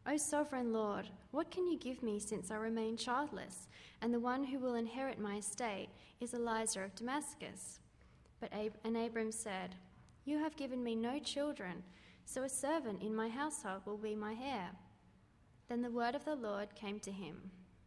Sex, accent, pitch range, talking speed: female, Australian, 205-260 Hz, 175 wpm